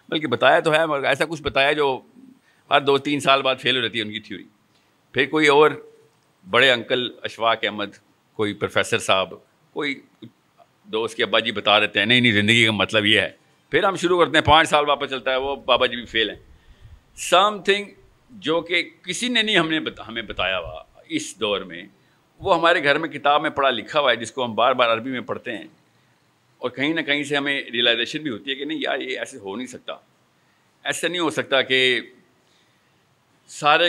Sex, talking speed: male, 210 wpm